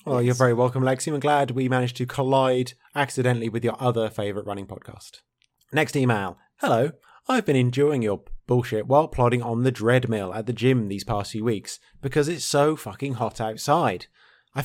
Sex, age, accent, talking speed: male, 20-39, British, 190 wpm